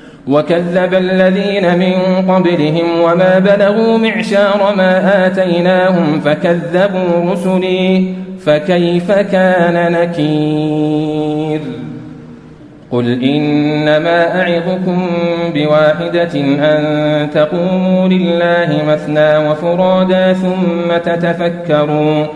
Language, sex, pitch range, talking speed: Arabic, male, 150-185 Hz, 65 wpm